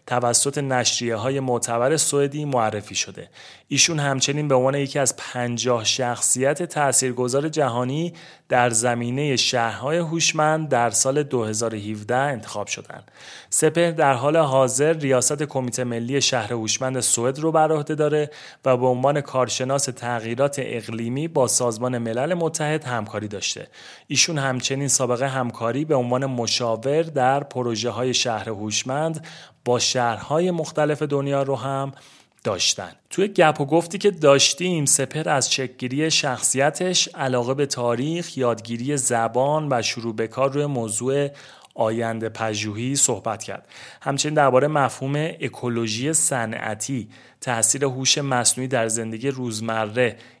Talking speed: 125 wpm